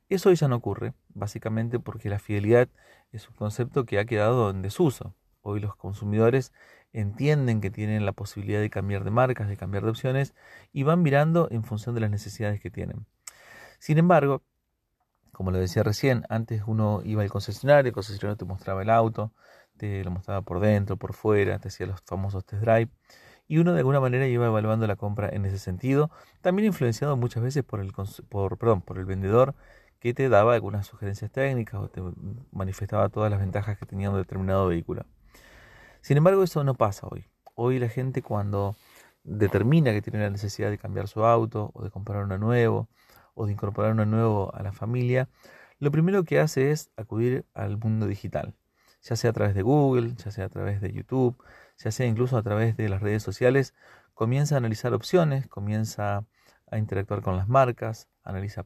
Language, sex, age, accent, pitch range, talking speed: Spanish, male, 30-49, Argentinian, 100-125 Hz, 190 wpm